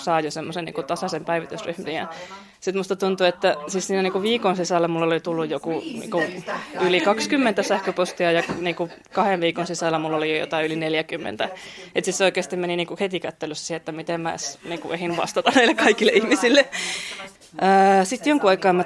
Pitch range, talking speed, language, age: 170-195 Hz, 185 wpm, Finnish, 20-39